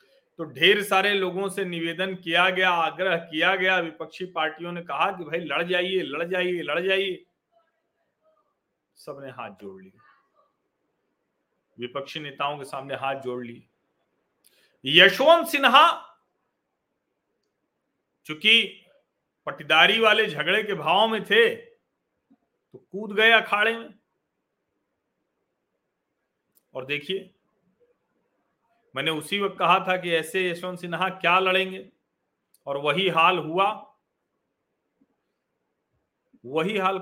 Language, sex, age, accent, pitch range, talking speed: Hindi, male, 40-59, native, 165-215 Hz, 110 wpm